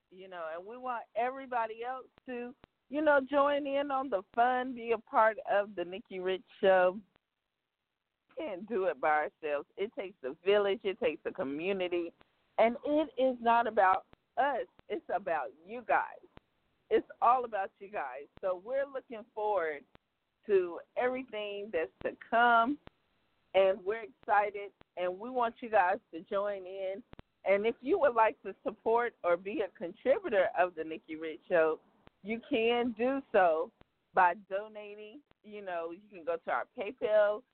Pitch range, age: 180-245 Hz, 50-69